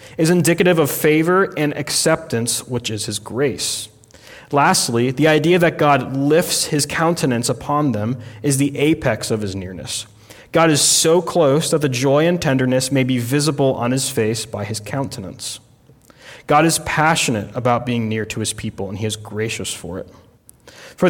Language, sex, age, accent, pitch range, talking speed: English, male, 30-49, American, 115-155 Hz, 170 wpm